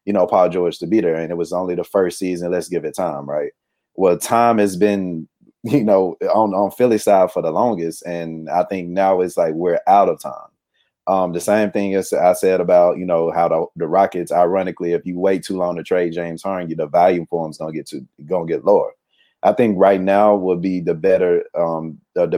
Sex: male